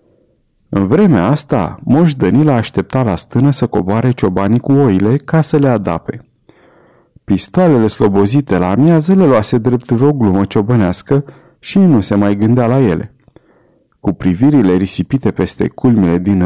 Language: Romanian